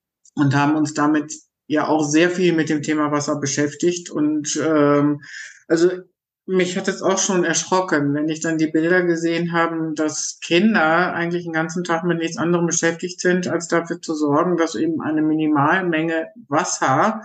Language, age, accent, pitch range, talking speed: German, 50-69, German, 155-180 Hz, 170 wpm